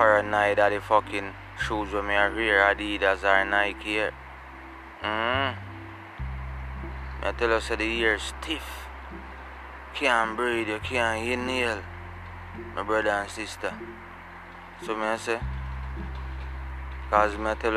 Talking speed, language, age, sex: 130 wpm, English, 20-39, male